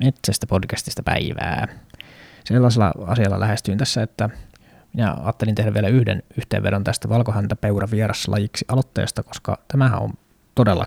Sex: male